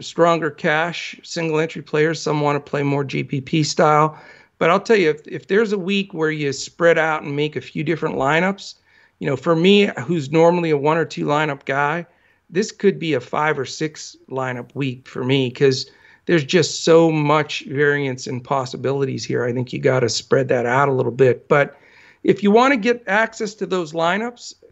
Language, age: English, 50-69